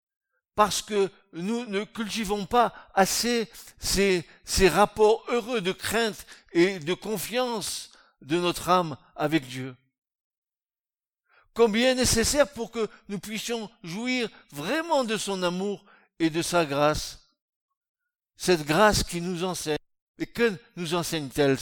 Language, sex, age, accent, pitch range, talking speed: French, male, 60-79, French, 165-230 Hz, 130 wpm